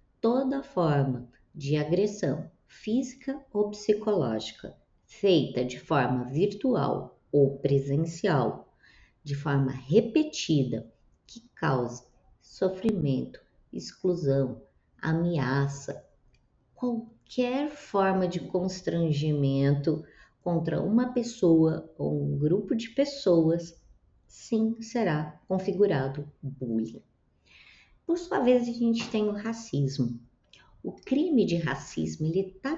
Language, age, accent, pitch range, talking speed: Portuguese, 20-39, Brazilian, 140-220 Hz, 95 wpm